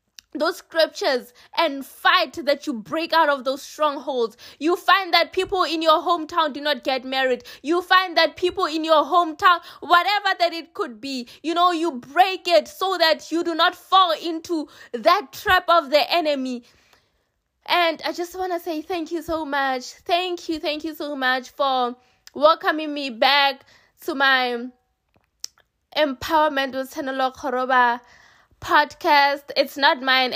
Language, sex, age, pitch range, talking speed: English, female, 20-39, 255-330 Hz, 160 wpm